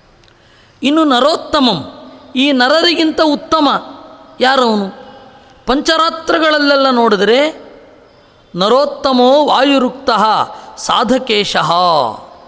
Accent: native